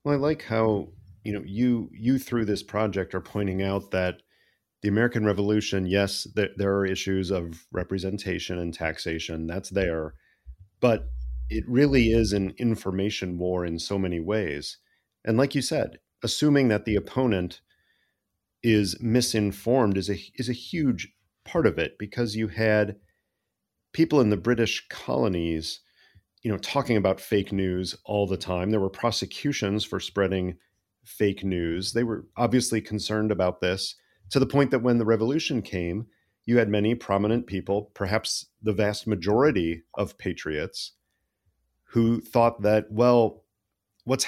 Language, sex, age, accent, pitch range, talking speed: English, male, 40-59, American, 95-115 Hz, 150 wpm